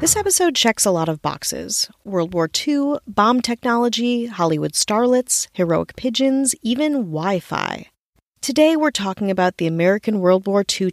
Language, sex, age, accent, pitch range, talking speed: English, female, 30-49, American, 170-235 Hz, 150 wpm